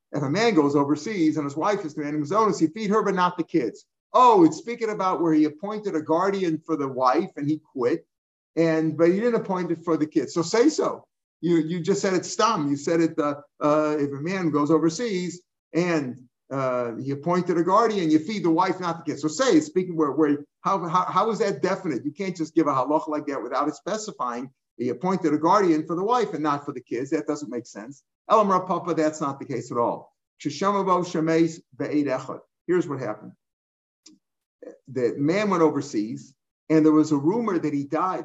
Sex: male